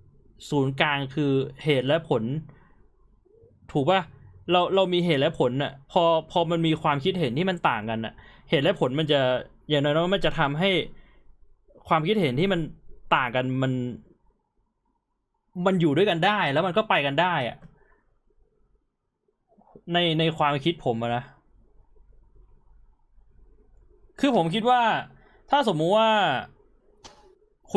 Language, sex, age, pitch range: Thai, male, 20-39, 140-190 Hz